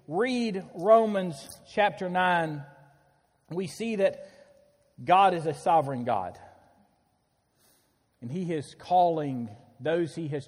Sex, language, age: male, English, 40-59